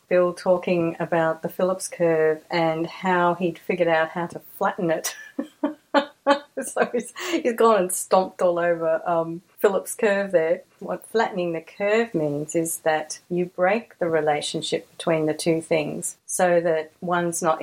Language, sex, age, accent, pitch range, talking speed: English, female, 40-59, Australian, 165-205 Hz, 155 wpm